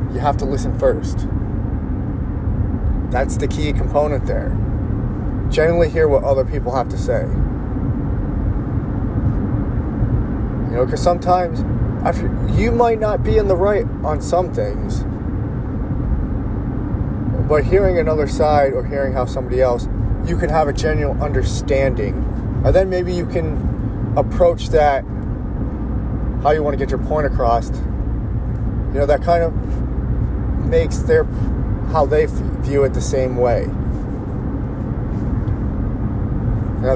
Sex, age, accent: male, 30-49, American